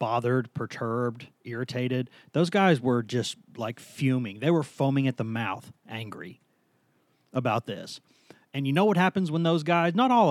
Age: 30-49